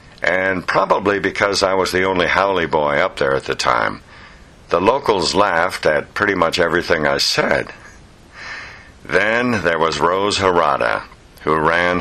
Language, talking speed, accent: English, 150 wpm, American